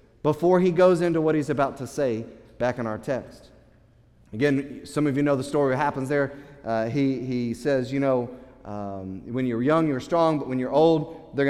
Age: 30-49